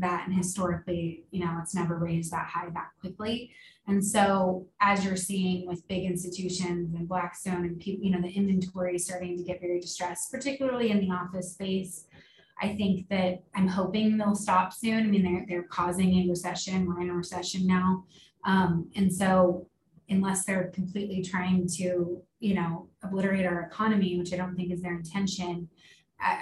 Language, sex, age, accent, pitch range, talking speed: English, female, 20-39, American, 180-195 Hz, 175 wpm